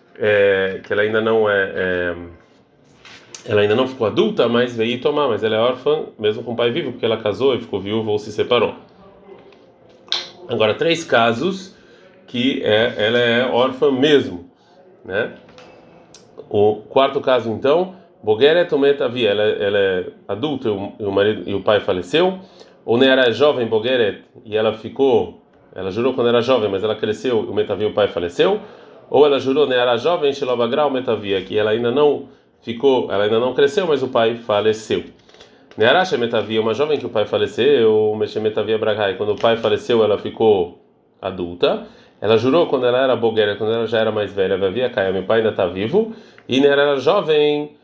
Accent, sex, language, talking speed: Brazilian, male, Portuguese, 185 wpm